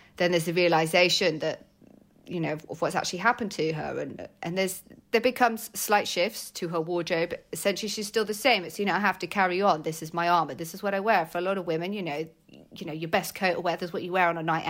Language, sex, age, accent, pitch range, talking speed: English, female, 30-49, British, 160-200 Hz, 275 wpm